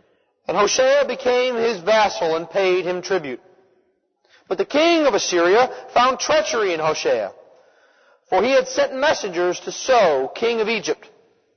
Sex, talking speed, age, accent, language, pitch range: male, 145 wpm, 40-59, American, English, 200-290 Hz